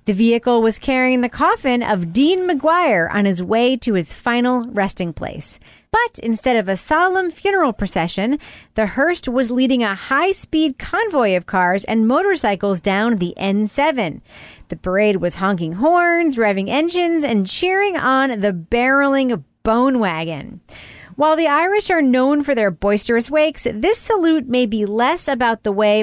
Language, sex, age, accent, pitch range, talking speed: English, female, 40-59, American, 210-300 Hz, 160 wpm